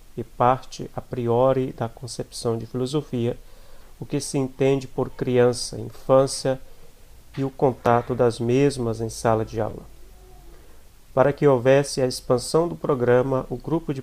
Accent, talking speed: Brazilian, 145 wpm